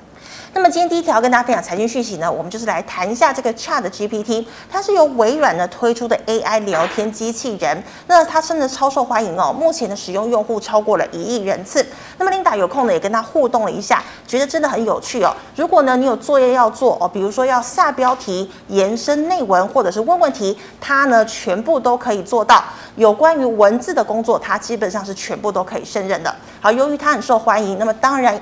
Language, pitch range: Chinese, 210-265 Hz